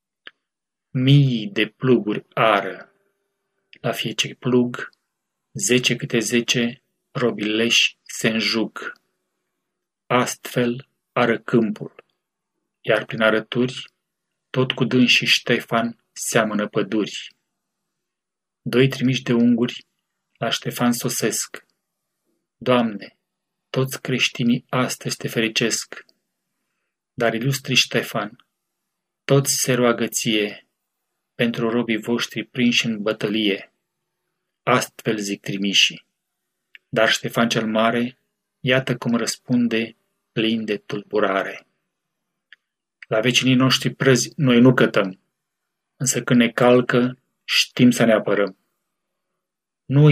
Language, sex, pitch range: Romanian, male, 115-130 Hz